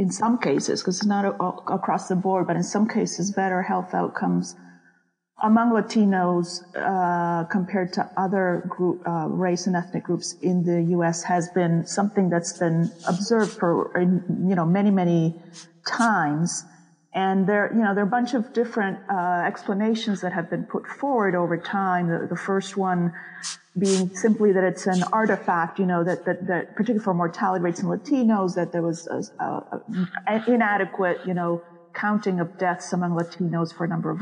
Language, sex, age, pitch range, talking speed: English, female, 40-59, 175-200 Hz, 170 wpm